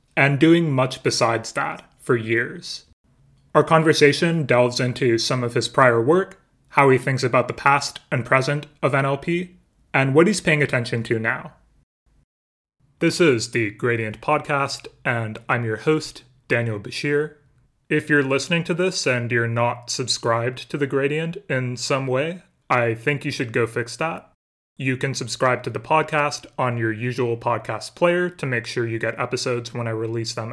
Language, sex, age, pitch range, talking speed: English, male, 30-49, 120-150 Hz, 170 wpm